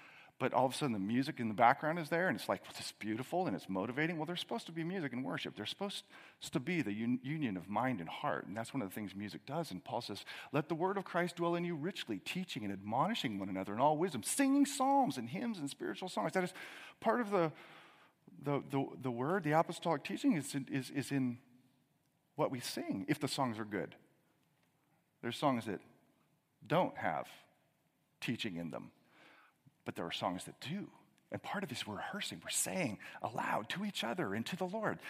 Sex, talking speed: male, 220 wpm